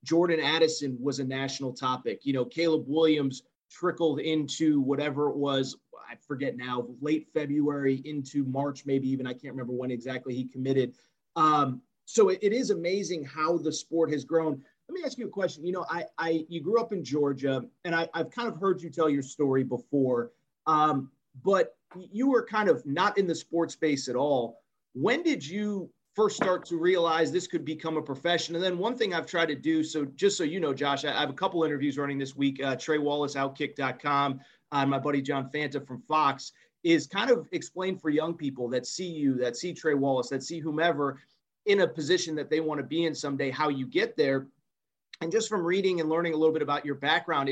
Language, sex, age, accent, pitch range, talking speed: English, male, 30-49, American, 140-170 Hz, 210 wpm